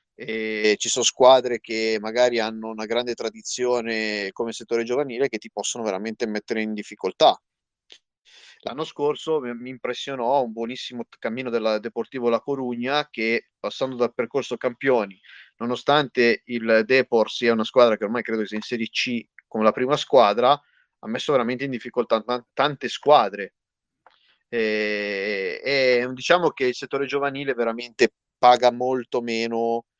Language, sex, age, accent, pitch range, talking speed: Italian, male, 30-49, native, 110-135 Hz, 140 wpm